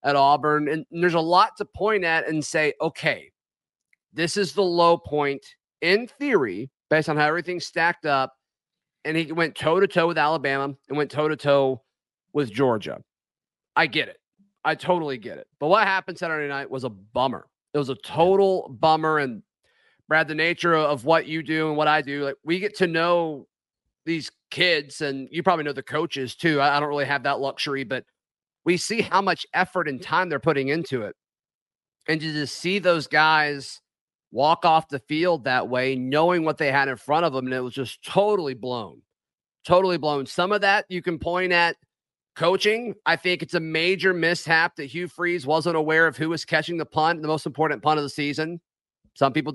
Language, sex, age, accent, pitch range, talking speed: English, male, 30-49, American, 140-175 Hz, 195 wpm